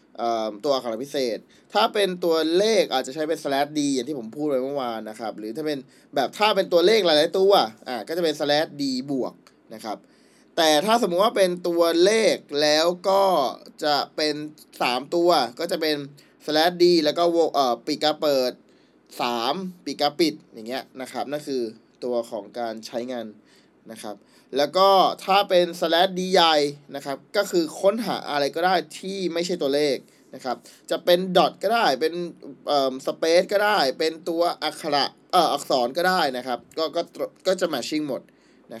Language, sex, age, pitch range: Thai, male, 20-39, 140-185 Hz